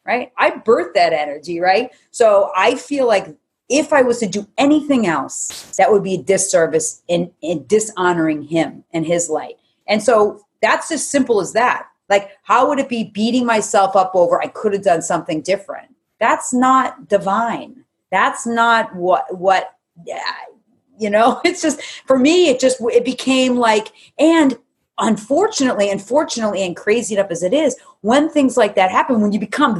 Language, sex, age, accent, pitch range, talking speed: English, female, 30-49, American, 180-265 Hz, 175 wpm